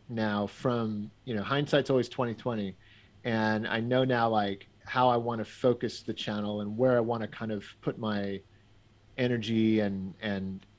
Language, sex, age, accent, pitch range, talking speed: English, male, 40-59, American, 105-140 Hz, 170 wpm